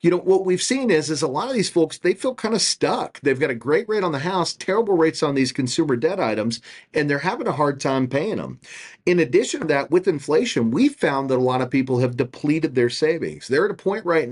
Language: English